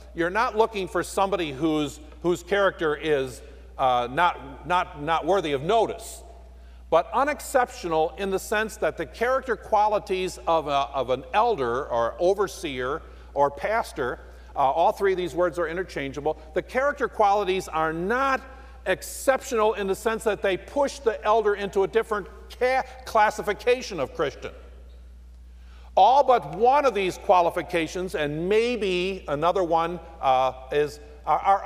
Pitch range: 155-215 Hz